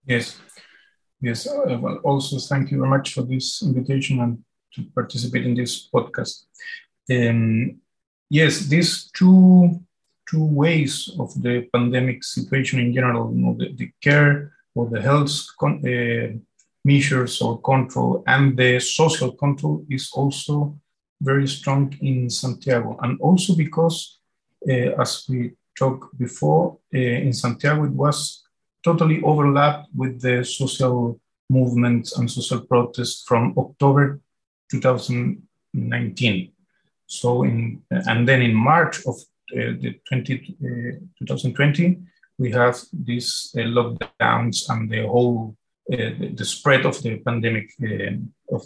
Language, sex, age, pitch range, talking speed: English, male, 50-69, 120-145 Hz, 130 wpm